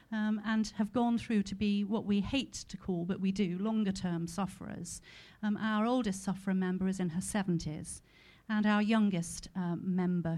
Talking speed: 180 wpm